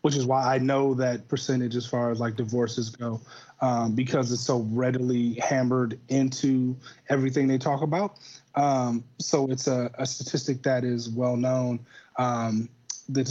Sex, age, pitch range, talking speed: male, 30-49, 125-140 Hz, 160 wpm